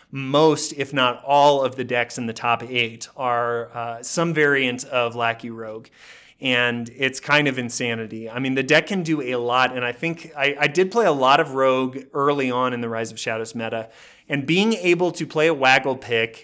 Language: English